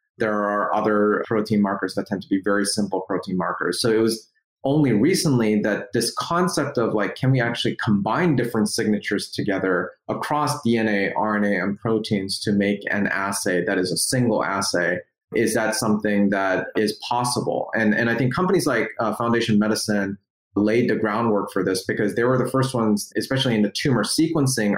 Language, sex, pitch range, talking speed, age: English, male, 105-125 Hz, 180 wpm, 30-49